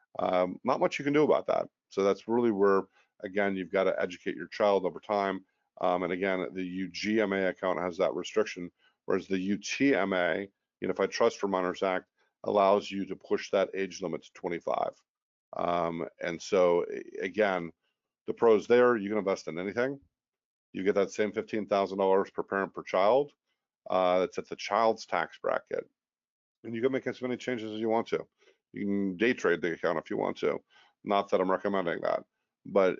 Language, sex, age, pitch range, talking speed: English, male, 50-69, 95-110 Hz, 190 wpm